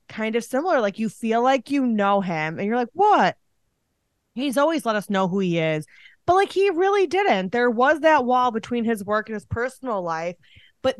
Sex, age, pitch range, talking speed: female, 20-39, 175-235 Hz, 215 wpm